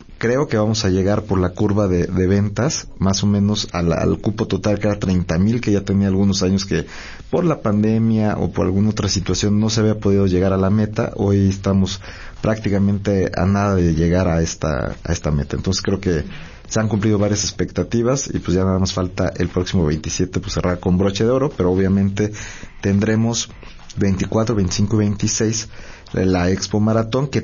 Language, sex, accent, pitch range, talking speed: Spanish, male, Mexican, 95-110 Hz, 195 wpm